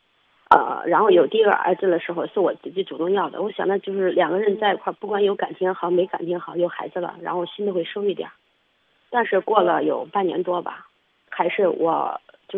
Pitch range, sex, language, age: 175-235 Hz, female, Chinese, 30-49